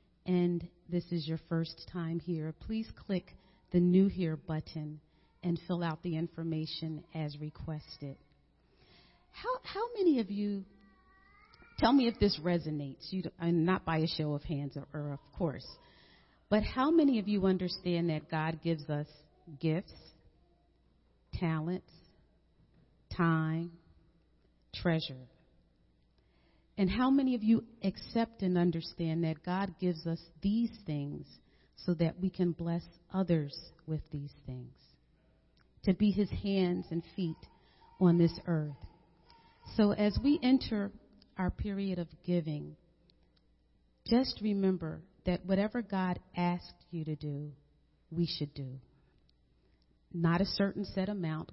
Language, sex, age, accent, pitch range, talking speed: English, female, 40-59, American, 155-190 Hz, 130 wpm